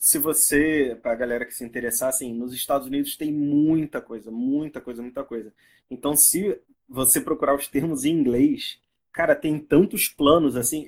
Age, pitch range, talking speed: 20-39, 145-225 Hz, 170 wpm